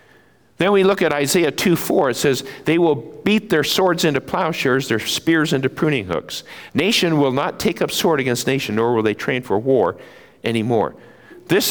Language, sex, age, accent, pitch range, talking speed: English, male, 50-69, American, 125-165 Hz, 185 wpm